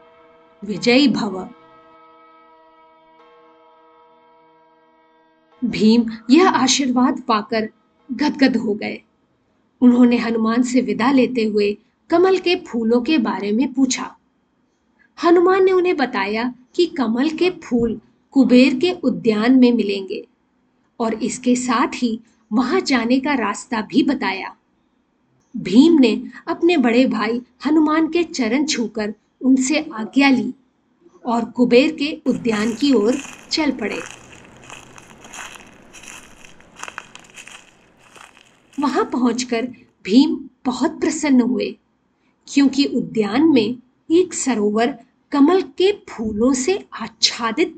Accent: native